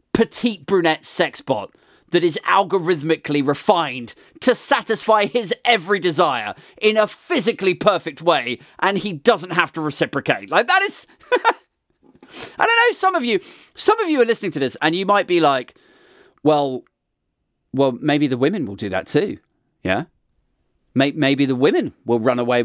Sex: male